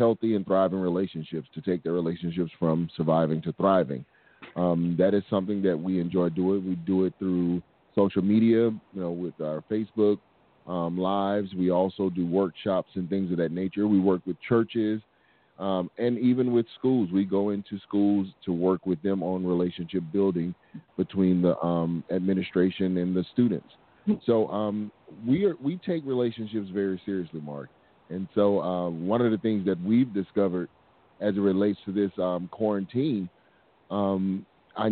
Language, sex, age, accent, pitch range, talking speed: English, male, 30-49, American, 90-110 Hz, 165 wpm